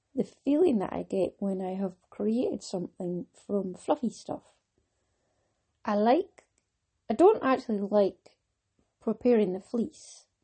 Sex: female